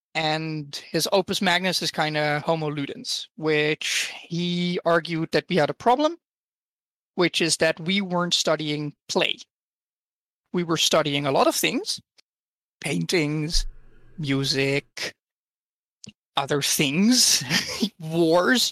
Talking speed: 115 wpm